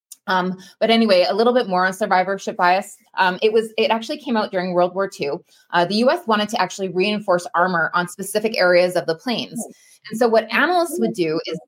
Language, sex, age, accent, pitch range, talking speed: English, female, 20-39, American, 185-235 Hz, 215 wpm